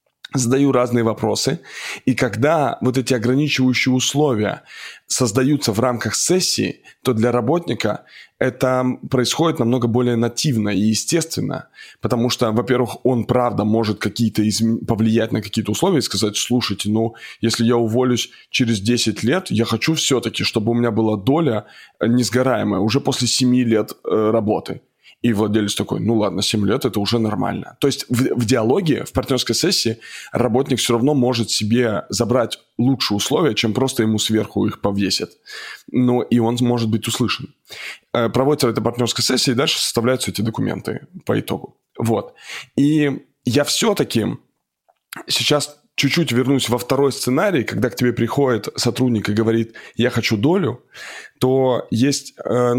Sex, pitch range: male, 110-130 Hz